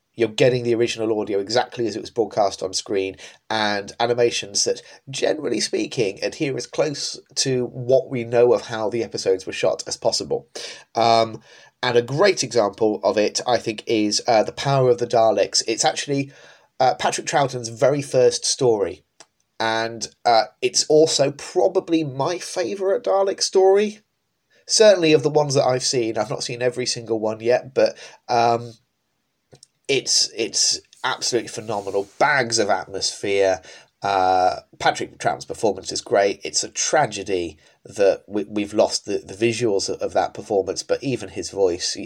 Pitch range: 110-155 Hz